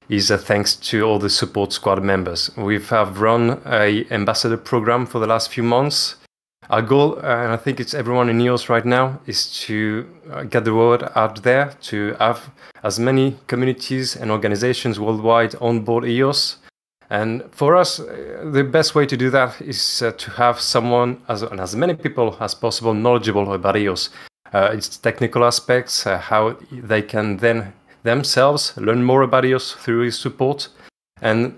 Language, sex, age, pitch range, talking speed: English, male, 30-49, 105-125 Hz, 170 wpm